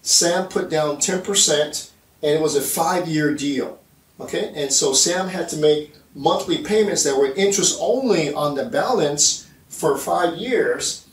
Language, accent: English, American